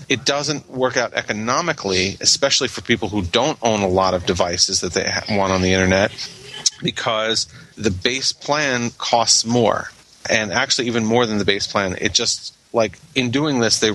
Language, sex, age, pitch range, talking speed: English, male, 40-59, 100-120 Hz, 180 wpm